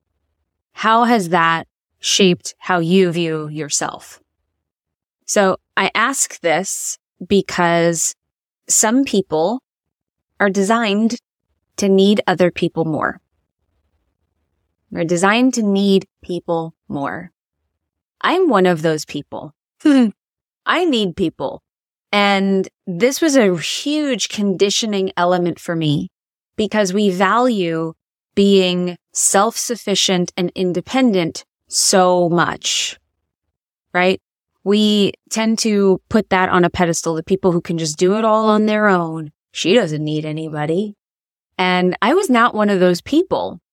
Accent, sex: American, female